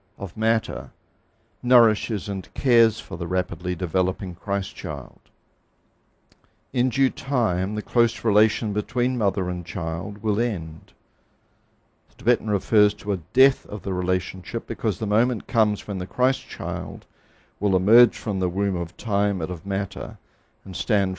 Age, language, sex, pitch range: 60-79, English, male, 95-115 Hz